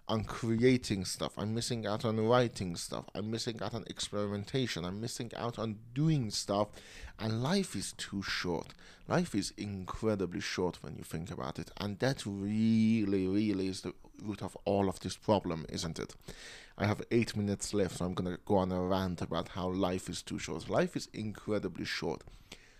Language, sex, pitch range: English, male, 90-110 Hz